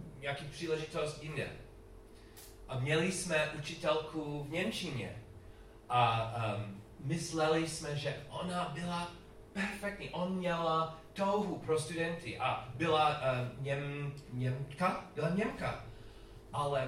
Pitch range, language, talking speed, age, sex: 115-165 Hz, Czech, 105 wpm, 30-49, male